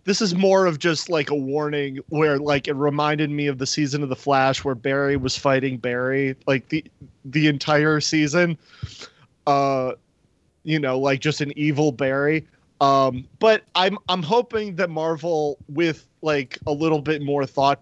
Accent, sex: American, male